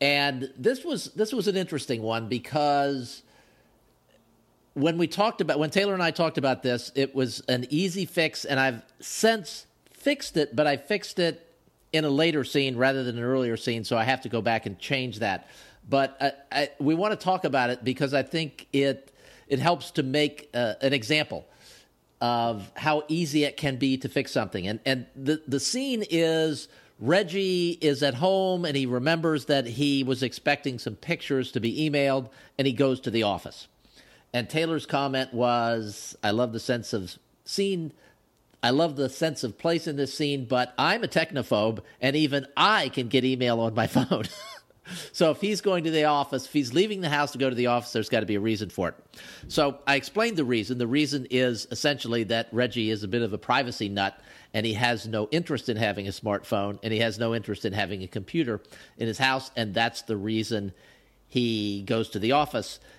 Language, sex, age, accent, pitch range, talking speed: English, male, 50-69, American, 115-155 Hz, 205 wpm